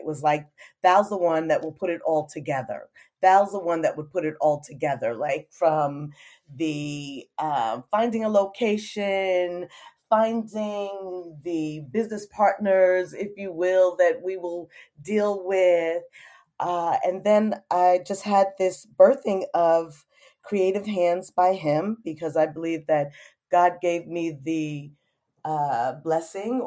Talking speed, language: 140 wpm, English